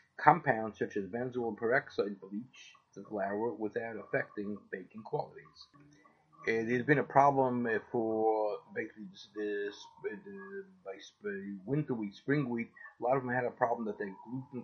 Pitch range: 105-135 Hz